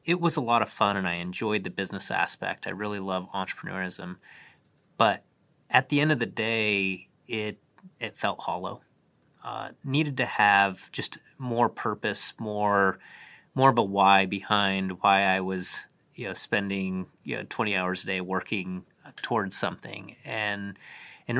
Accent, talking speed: American, 160 wpm